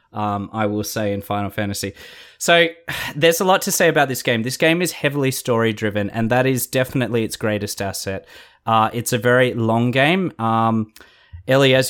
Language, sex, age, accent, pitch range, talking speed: English, male, 20-39, Australian, 110-130 Hz, 190 wpm